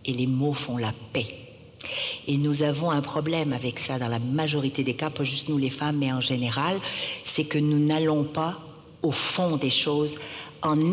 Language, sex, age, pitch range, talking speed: French, female, 60-79, 135-160 Hz, 200 wpm